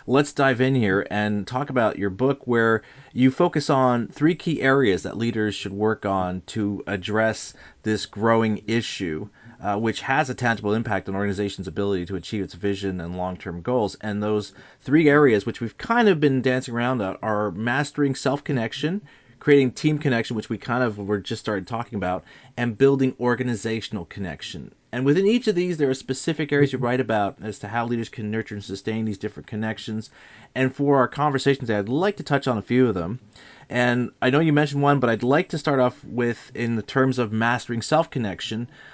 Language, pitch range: English, 110-140 Hz